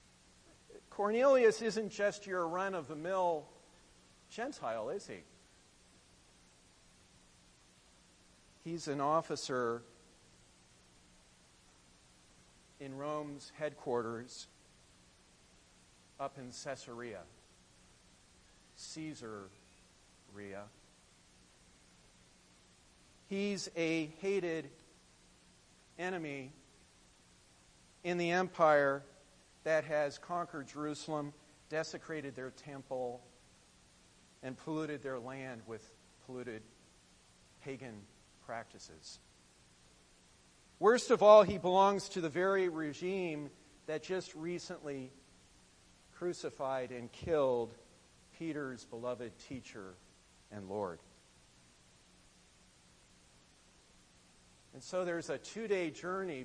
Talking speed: 75 wpm